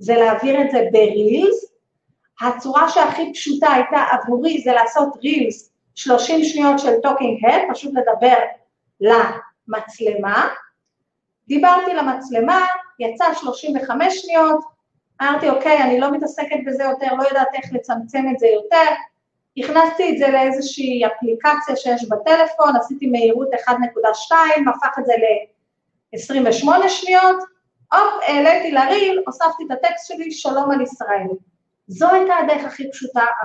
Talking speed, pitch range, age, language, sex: 125 wpm, 225-310 Hz, 40-59, Hebrew, female